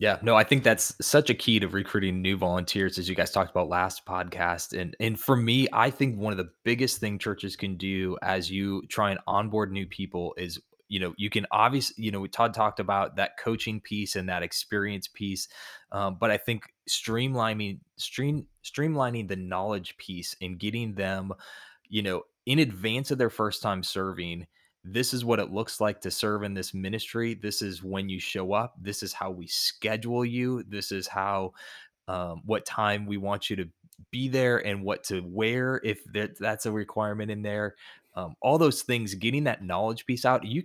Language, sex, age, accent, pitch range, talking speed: English, male, 20-39, American, 95-110 Hz, 200 wpm